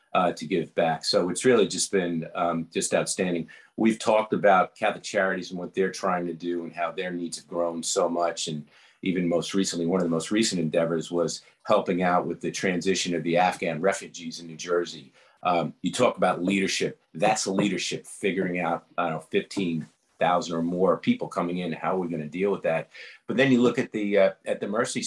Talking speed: 215 wpm